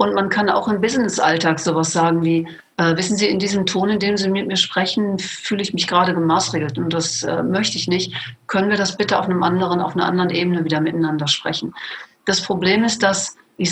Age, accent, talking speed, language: 50-69, German, 225 wpm, German